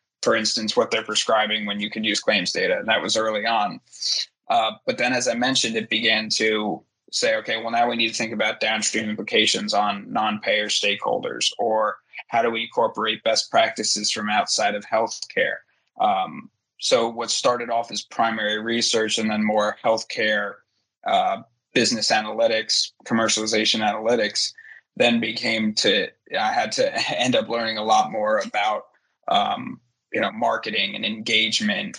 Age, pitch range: 20-39, 110-125 Hz